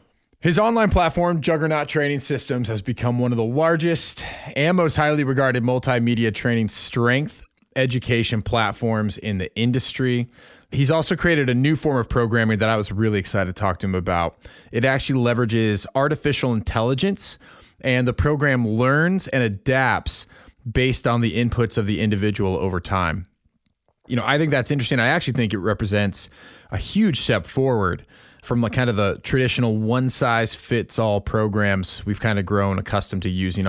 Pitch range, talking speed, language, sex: 110-145 Hz, 165 wpm, English, male